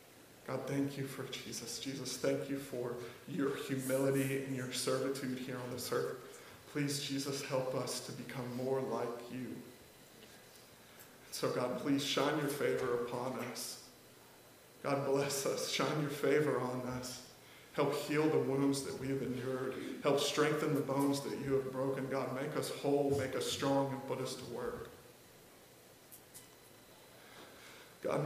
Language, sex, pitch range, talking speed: English, male, 130-140 Hz, 155 wpm